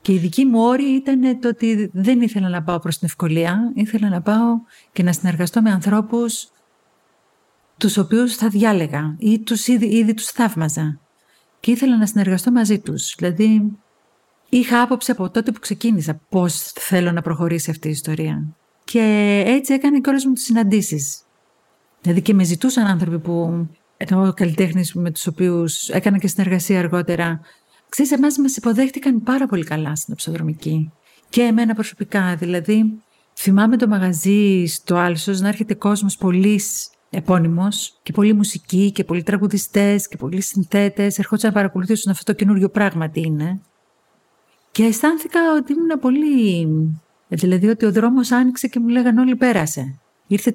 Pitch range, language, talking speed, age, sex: 175-230 Hz, Greek, 155 wpm, 50-69, female